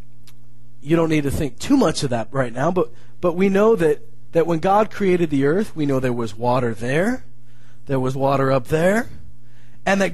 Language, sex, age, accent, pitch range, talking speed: English, male, 30-49, American, 135-225 Hz, 205 wpm